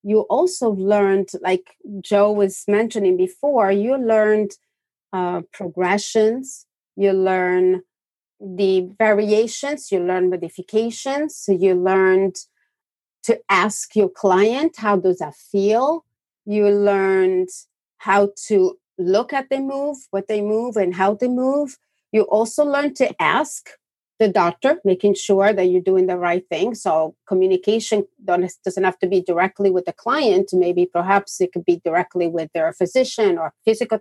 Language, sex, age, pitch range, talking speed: English, female, 40-59, 185-230 Hz, 145 wpm